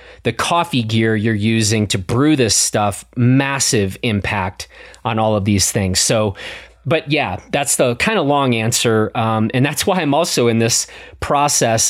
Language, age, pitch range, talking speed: English, 30-49, 110-145 Hz, 170 wpm